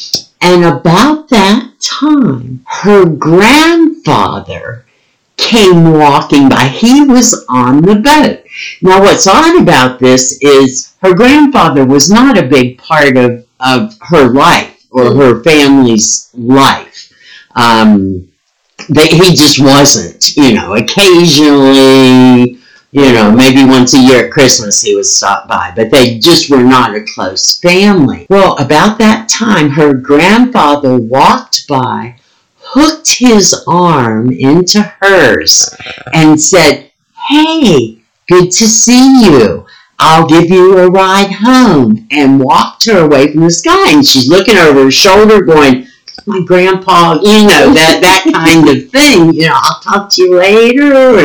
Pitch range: 135-215 Hz